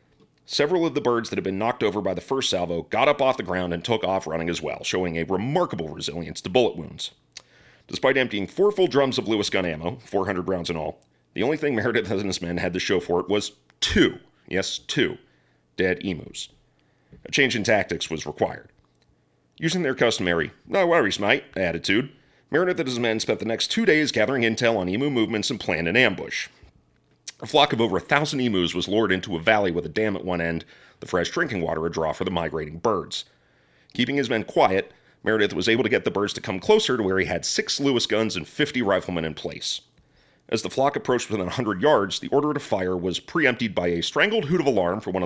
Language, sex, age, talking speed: English, male, 40-59, 225 wpm